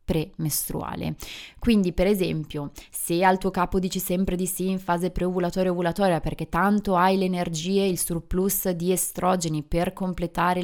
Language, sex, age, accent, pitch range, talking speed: Italian, female, 20-39, native, 170-195 Hz, 160 wpm